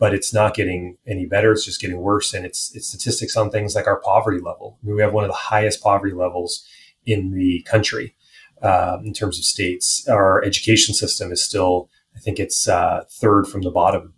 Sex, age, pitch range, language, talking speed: male, 30-49, 95-110 Hz, English, 215 wpm